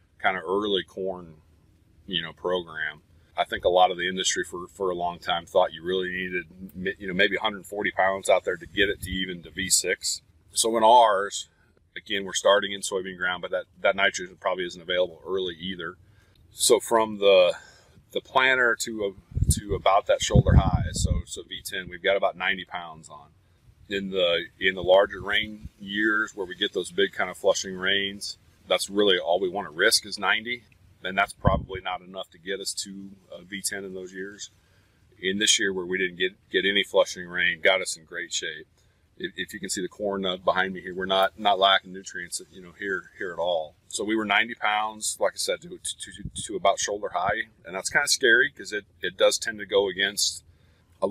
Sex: male